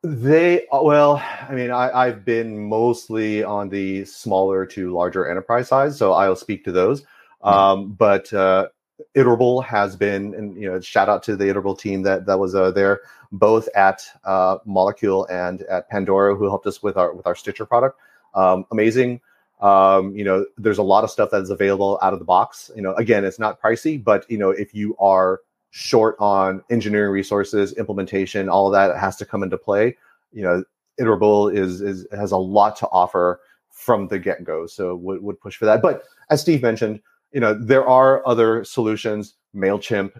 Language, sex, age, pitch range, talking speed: English, male, 30-49, 95-110 Hz, 190 wpm